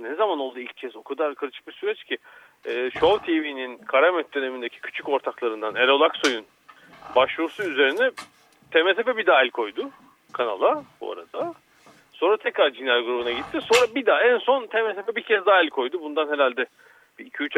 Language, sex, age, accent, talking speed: Turkish, male, 40-59, native, 165 wpm